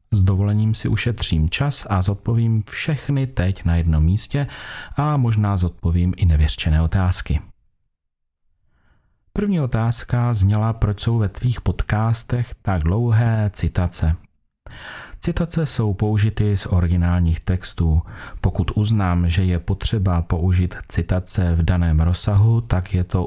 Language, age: Czech, 40-59